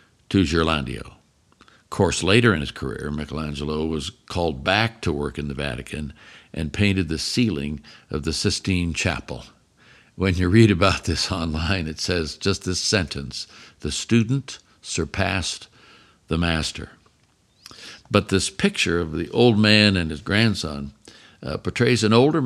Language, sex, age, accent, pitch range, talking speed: English, male, 60-79, American, 85-105 Hz, 145 wpm